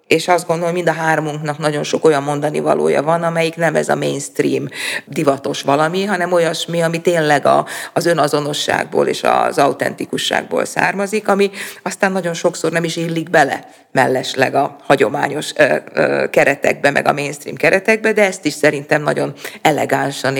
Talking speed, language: 150 wpm, Hungarian